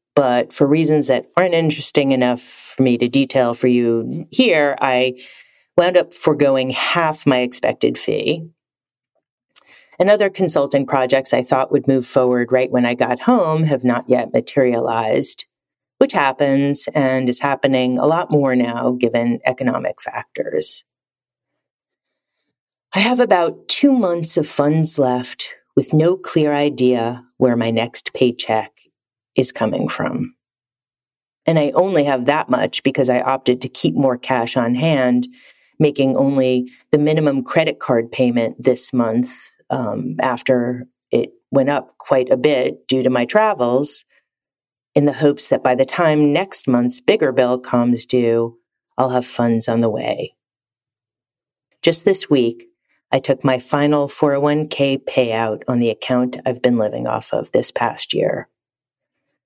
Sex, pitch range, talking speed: female, 125-145 Hz, 145 wpm